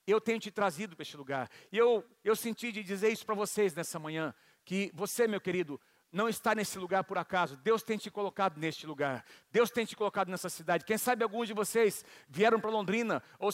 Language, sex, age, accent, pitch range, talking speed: Portuguese, male, 50-69, Brazilian, 205-240 Hz, 215 wpm